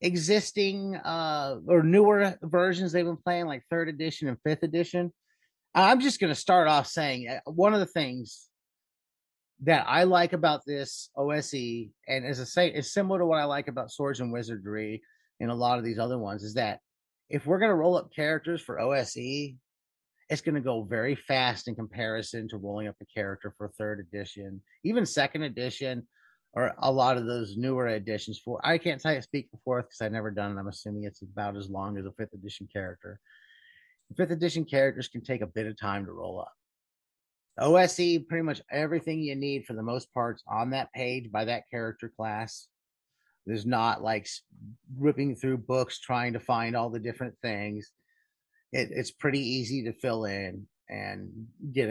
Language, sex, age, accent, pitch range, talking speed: English, male, 30-49, American, 110-160 Hz, 190 wpm